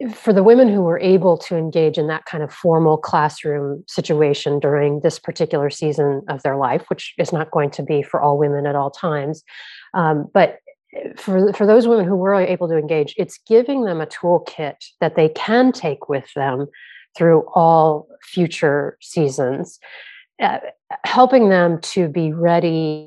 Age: 30-49